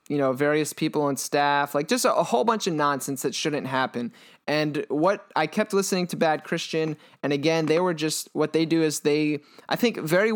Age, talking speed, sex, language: 20-39, 220 wpm, male, English